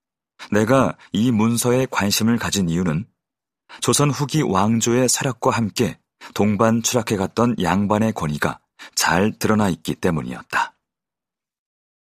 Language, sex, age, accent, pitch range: Korean, male, 40-59, native, 105-135 Hz